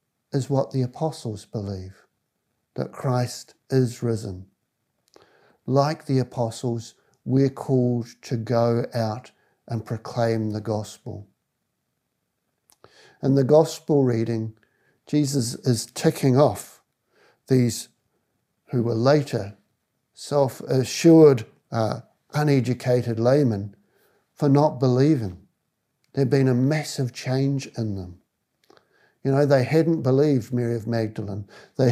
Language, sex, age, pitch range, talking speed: English, male, 60-79, 115-135 Hz, 105 wpm